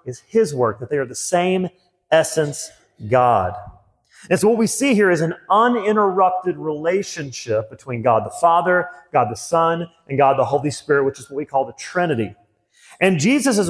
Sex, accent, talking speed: male, American, 180 wpm